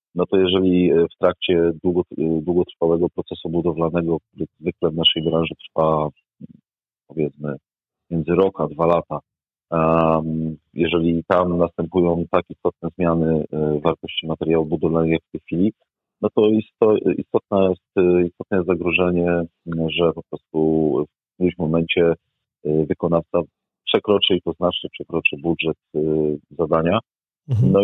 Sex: male